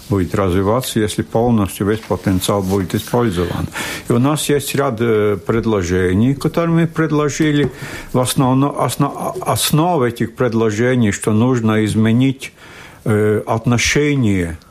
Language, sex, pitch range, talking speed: Russian, male, 100-130 Hz, 115 wpm